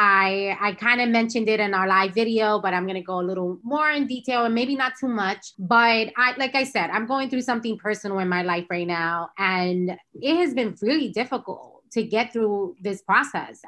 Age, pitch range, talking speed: 20-39, 190-235 Hz, 225 wpm